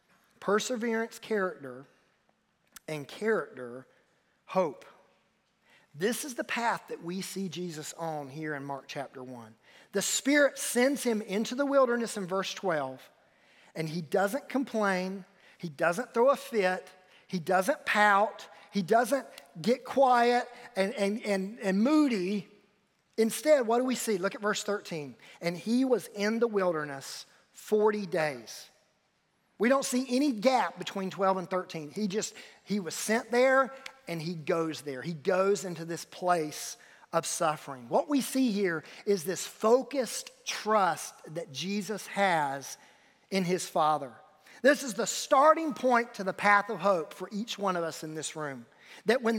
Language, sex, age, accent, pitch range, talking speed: English, male, 40-59, American, 175-240 Hz, 155 wpm